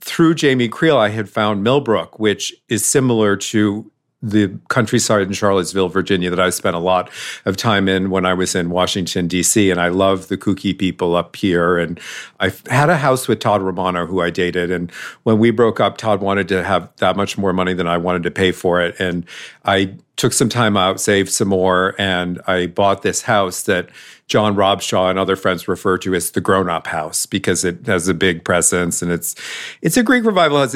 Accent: American